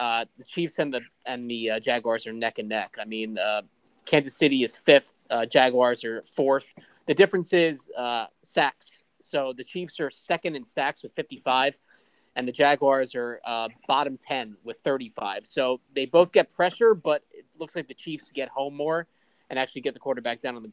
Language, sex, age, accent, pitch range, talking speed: English, male, 20-39, American, 130-160 Hz, 200 wpm